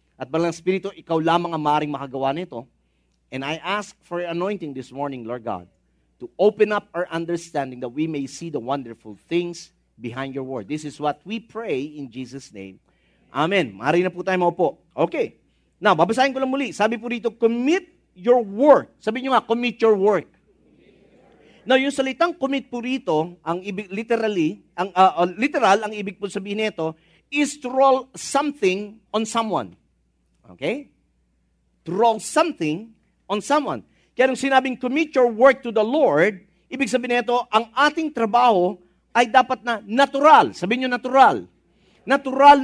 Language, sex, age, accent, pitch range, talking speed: English, male, 40-59, Filipino, 170-250 Hz, 160 wpm